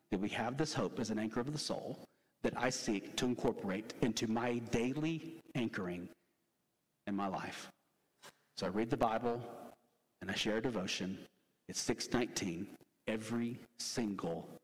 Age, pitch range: 40-59, 130-185 Hz